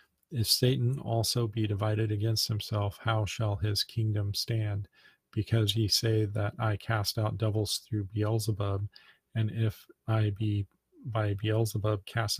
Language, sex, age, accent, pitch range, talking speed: English, male, 40-59, American, 105-115 Hz, 140 wpm